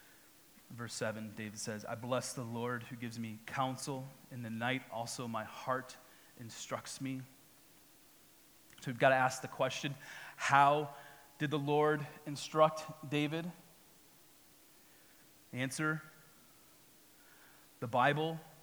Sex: male